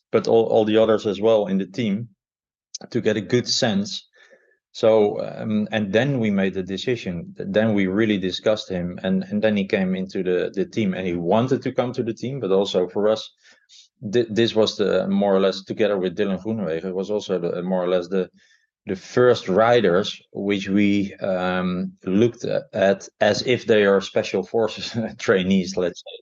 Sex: male